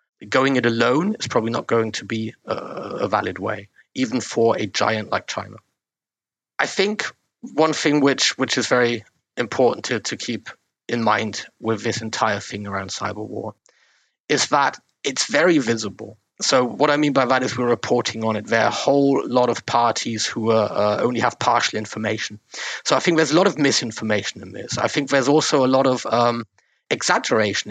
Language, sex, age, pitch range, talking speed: English, male, 40-59, 110-130 Hz, 190 wpm